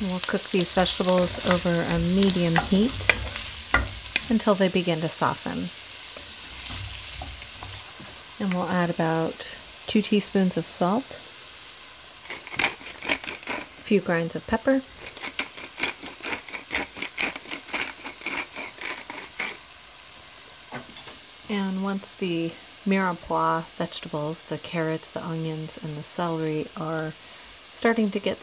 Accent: American